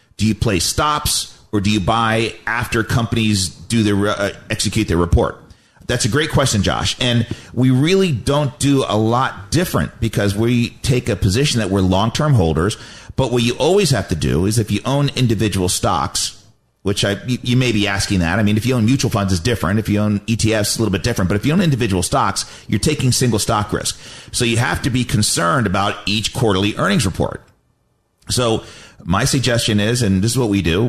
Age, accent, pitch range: 40-59, American, 100-120 Hz